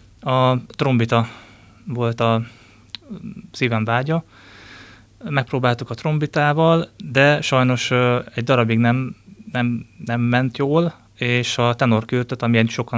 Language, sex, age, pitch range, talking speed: Hungarian, male, 20-39, 110-125 Hz, 115 wpm